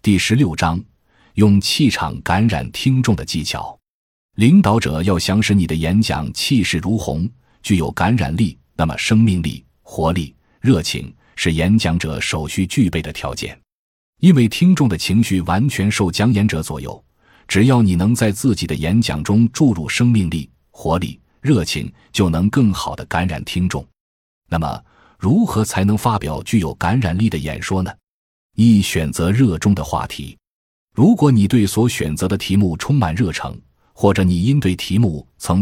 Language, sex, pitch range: Chinese, male, 80-110 Hz